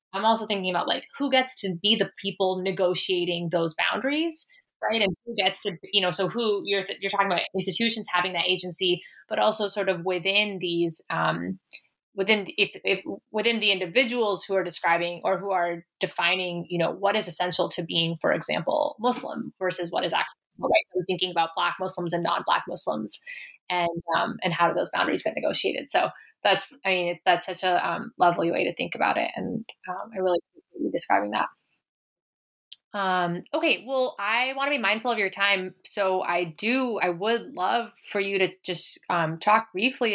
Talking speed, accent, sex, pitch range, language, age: 195 wpm, American, female, 175-220 Hz, English, 20-39